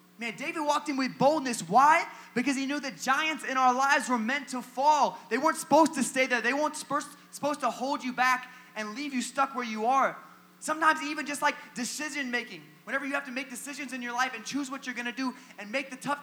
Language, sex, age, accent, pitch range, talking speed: English, male, 20-39, American, 215-270 Hz, 235 wpm